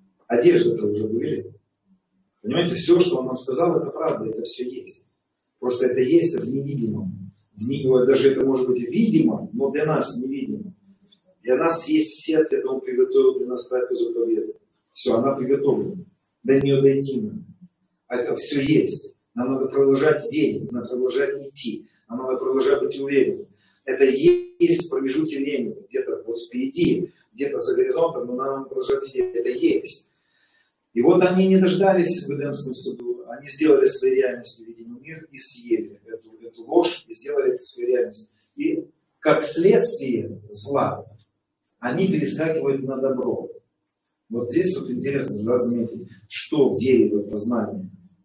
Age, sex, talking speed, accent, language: 40-59, male, 150 wpm, native, Russian